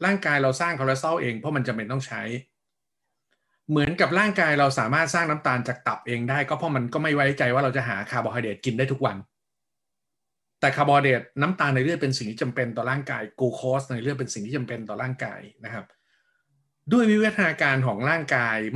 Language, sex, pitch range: Thai, male, 125-160 Hz